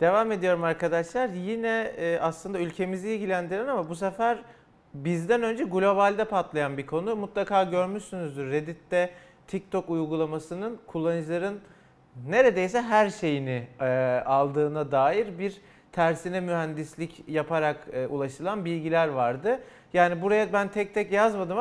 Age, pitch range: 40-59, 165-205 Hz